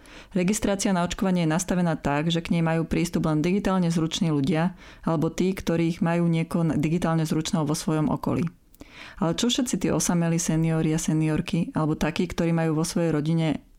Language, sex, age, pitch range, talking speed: Slovak, female, 30-49, 155-180 Hz, 180 wpm